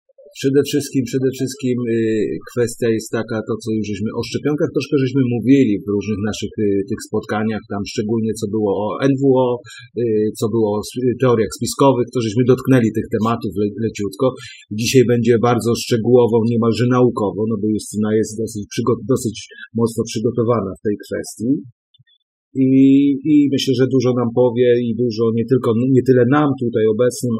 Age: 40-59